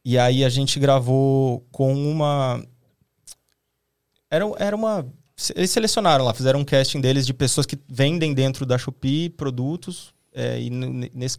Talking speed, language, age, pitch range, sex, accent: 155 wpm, Portuguese, 20-39, 125-150 Hz, male, Brazilian